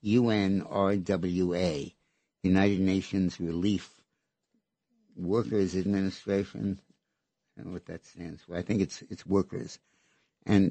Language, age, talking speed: English, 60-79, 105 wpm